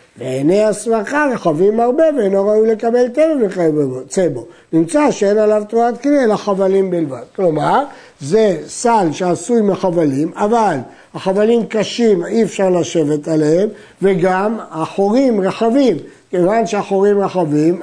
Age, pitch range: 60-79, 175-225 Hz